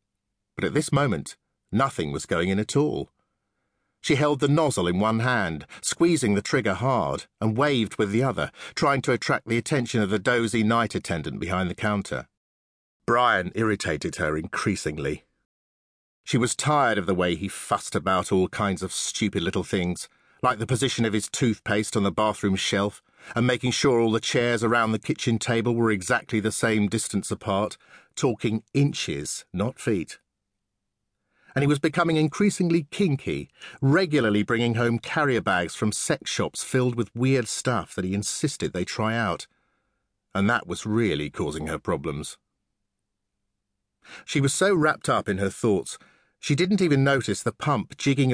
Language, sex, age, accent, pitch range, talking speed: English, male, 50-69, British, 100-135 Hz, 165 wpm